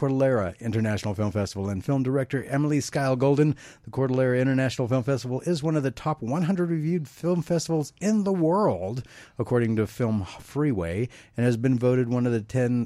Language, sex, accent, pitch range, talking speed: English, male, American, 115-150 Hz, 180 wpm